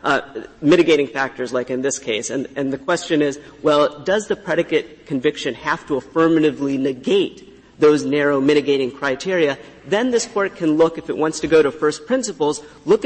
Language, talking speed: English, 180 wpm